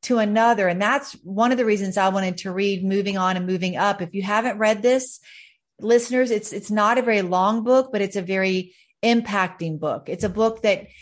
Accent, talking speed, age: American, 220 wpm, 40-59